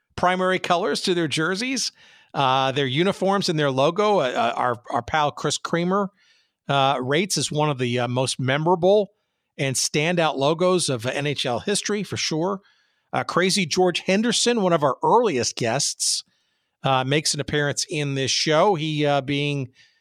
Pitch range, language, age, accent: 135-180 Hz, English, 50-69, American